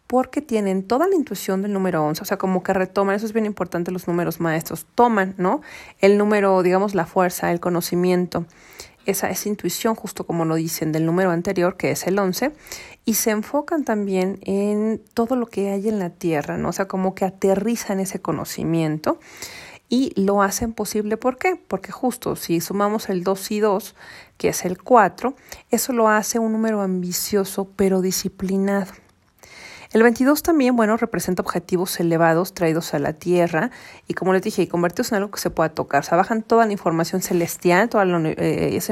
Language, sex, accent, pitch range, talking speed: Spanish, female, Mexican, 175-220 Hz, 190 wpm